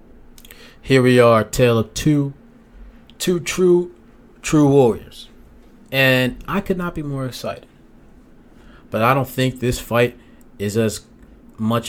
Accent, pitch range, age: American, 105-135 Hz, 30-49